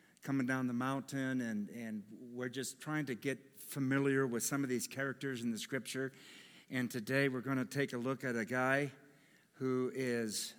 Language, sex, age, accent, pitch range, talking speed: English, male, 60-79, American, 130-160 Hz, 185 wpm